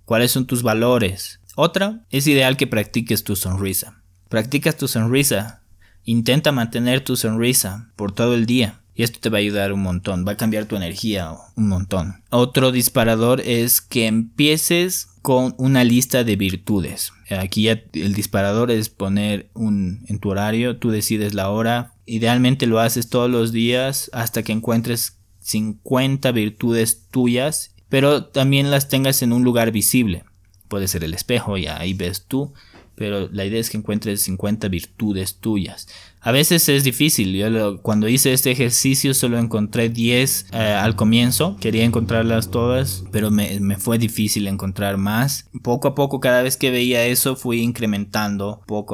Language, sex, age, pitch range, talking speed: Spanish, male, 20-39, 100-125 Hz, 165 wpm